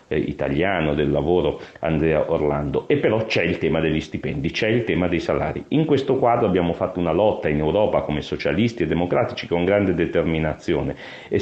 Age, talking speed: 40-59, 180 wpm